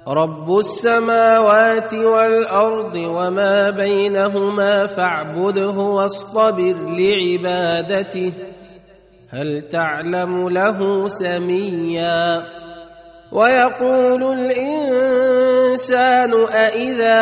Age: 30-49